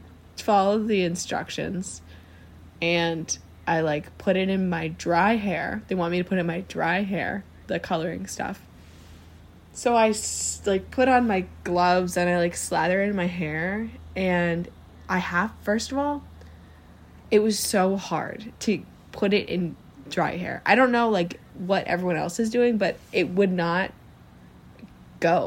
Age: 10-29